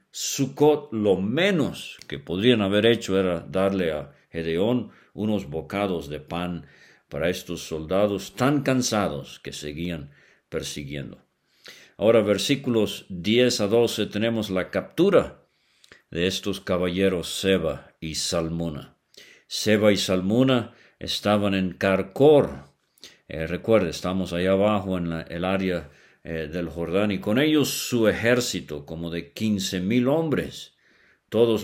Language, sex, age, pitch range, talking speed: English, male, 50-69, 85-110 Hz, 120 wpm